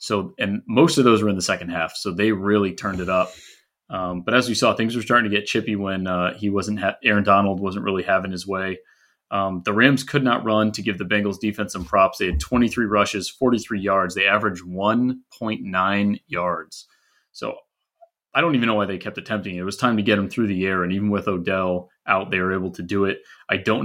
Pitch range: 95-115 Hz